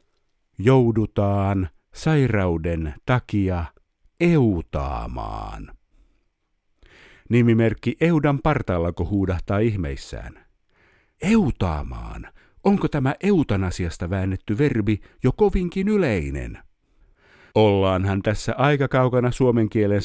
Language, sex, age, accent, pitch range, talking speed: Finnish, male, 60-79, native, 90-125 Hz, 70 wpm